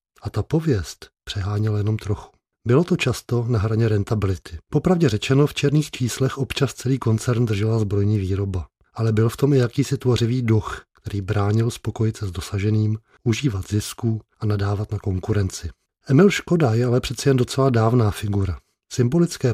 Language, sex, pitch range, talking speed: Czech, male, 105-135 Hz, 165 wpm